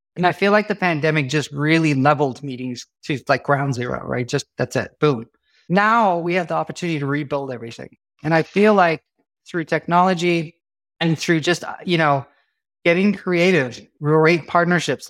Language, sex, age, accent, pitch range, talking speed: English, male, 30-49, American, 140-170 Hz, 165 wpm